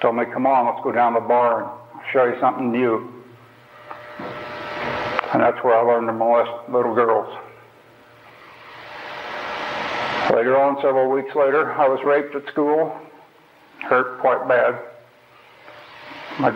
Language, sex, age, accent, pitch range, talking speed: English, male, 60-79, American, 120-140 Hz, 140 wpm